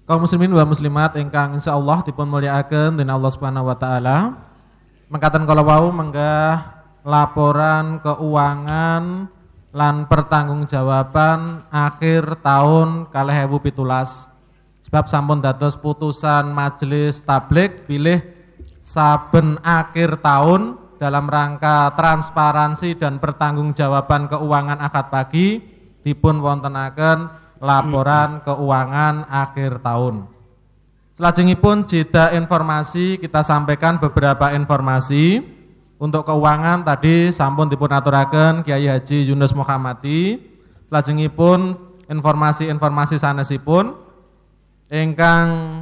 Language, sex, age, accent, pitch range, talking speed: Indonesian, male, 20-39, native, 145-165 Hz, 90 wpm